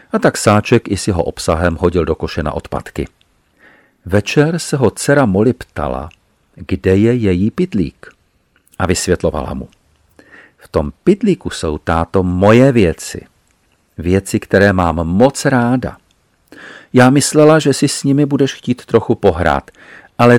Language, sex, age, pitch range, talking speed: Czech, male, 50-69, 85-115 Hz, 140 wpm